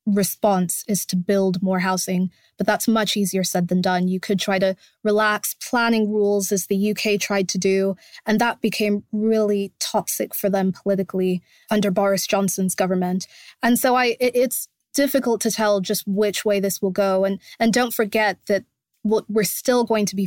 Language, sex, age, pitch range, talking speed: English, female, 20-39, 195-215 Hz, 185 wpm